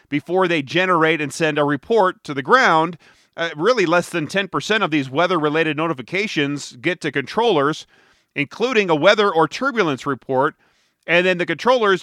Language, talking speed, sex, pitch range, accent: English, 160 wpm, male, 140-180 Hz, American